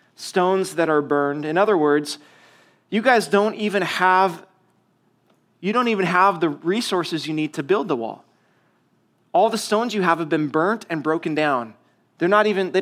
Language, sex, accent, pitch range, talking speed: English, male, American, 165-210 Hz, 185 wpm